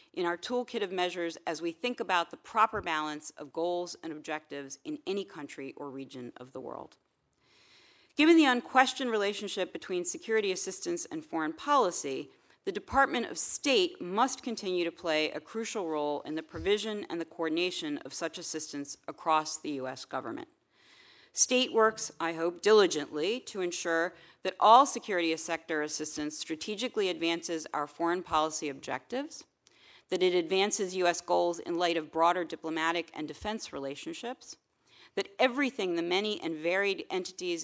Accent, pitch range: American, 160-225 Hz